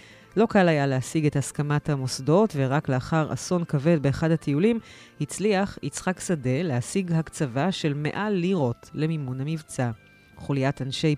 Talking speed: 135 wpm